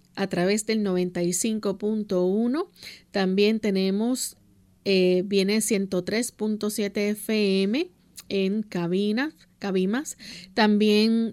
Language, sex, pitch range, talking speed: Spanish, female, 195-225 Hz, 70 wpm